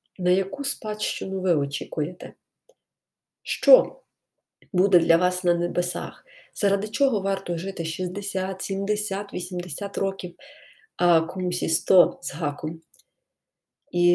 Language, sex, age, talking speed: Ukrainian, female, 30-49, 110 wpm